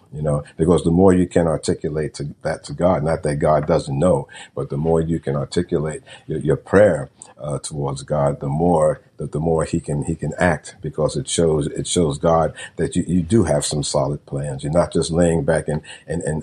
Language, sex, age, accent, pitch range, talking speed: English, male, 50-69, American, 75-95 Hz, 225 wpm